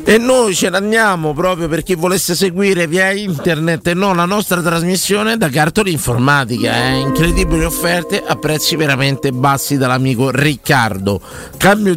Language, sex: Italian, male